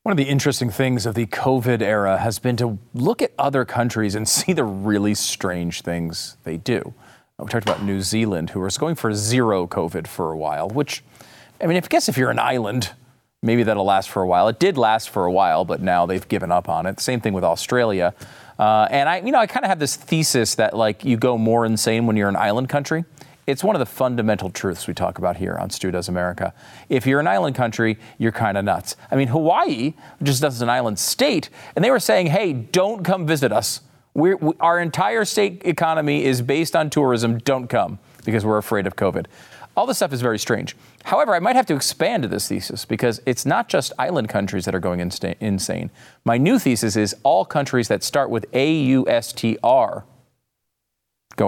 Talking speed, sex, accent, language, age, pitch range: 220 wpm, male, American, English, 40-59, 105-140 Hz